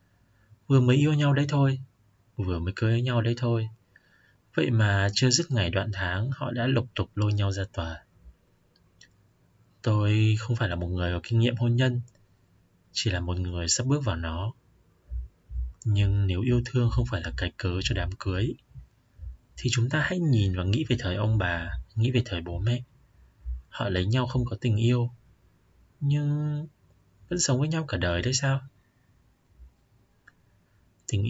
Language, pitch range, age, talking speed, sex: Vietnamese, 95-120 Hz, 20-39, 175 wpm, male